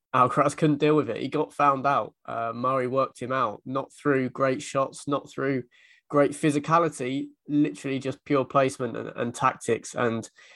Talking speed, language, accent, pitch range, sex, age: 170 wpm, English, British, 120-140 Hz, male, 20-39